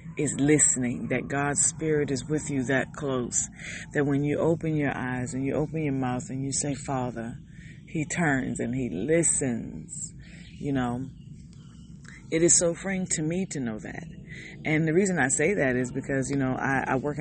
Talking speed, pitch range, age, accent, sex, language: 190 wpm, 135-165 Hz, 30-49, American, female, English